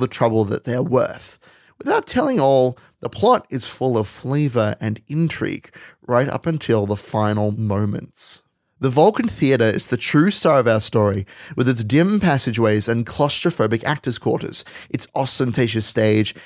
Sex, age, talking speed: male, 30-49, 155 wpm